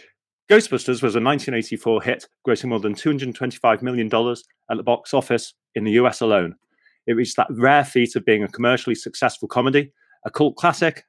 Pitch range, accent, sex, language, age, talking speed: 110-130 Hz, British, male, English, 30-49, 175 wpm